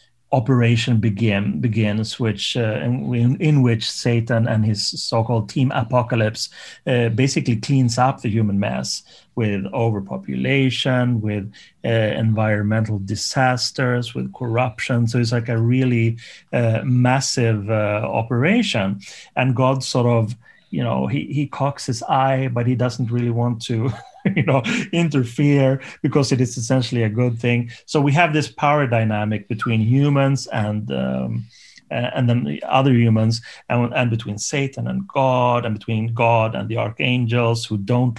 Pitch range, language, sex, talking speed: 115-130 Hz, English, male, 150 wpm